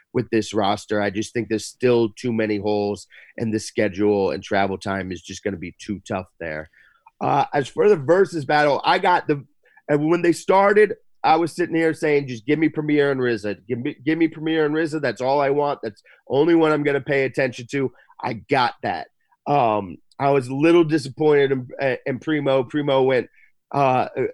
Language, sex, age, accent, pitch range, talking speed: English, male, 30-49, American, 115-150 Hz, 205 wpm